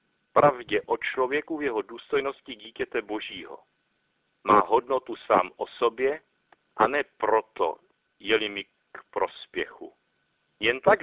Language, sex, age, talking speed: Czech, male, 60-79, 120 wpm